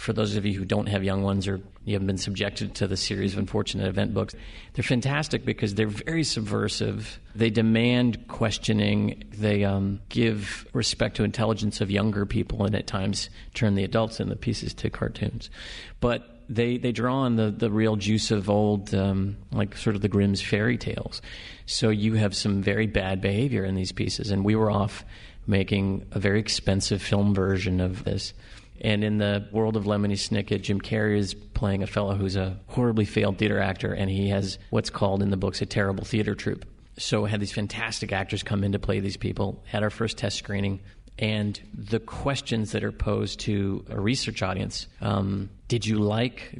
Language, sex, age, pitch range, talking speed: English, male, 40-59, 100-115 Hz, 195 wpm